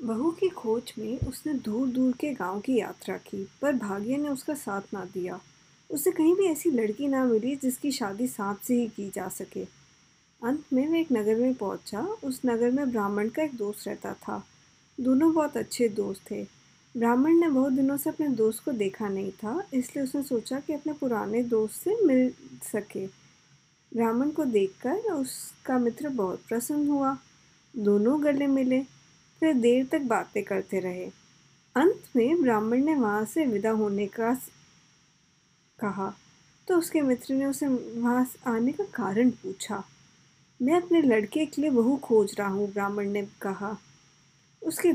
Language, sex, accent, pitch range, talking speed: English, female, Indian, 210-300 Hz, 160 wpm